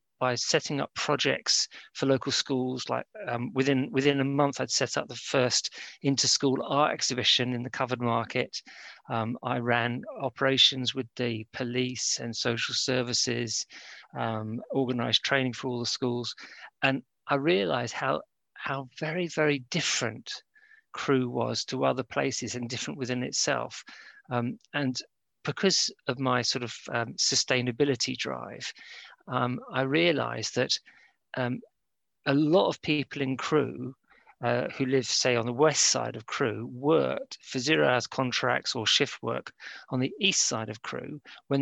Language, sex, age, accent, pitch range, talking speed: English, male, 40-59, British, 125-140 Hz, 150 wpm